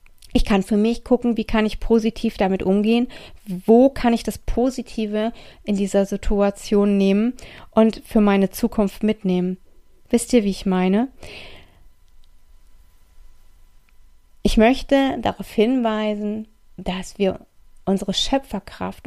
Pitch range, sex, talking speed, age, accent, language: 190-225 Hz, female, 120 wpm, 30-49, German, German